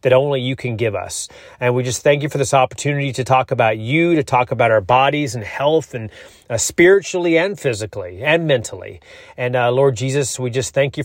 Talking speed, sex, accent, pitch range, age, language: 215 wpm, male, American, 125-155 Hz, 30-49, English